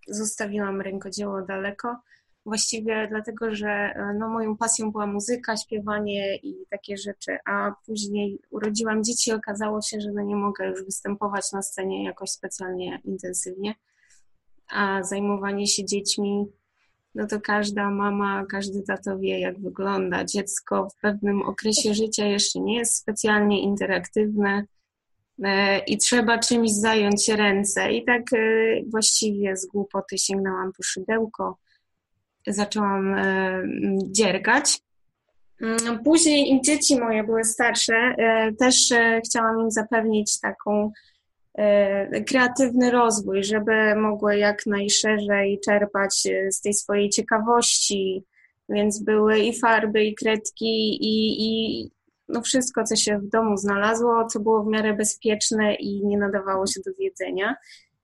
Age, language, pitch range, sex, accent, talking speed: 20-39, Polish, 200-225 Hz, female, native, 125 wpm